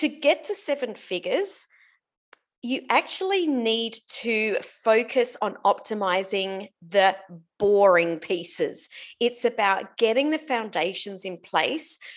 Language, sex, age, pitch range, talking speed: English, female, 30-49, 185-230 Hz, 110 wpm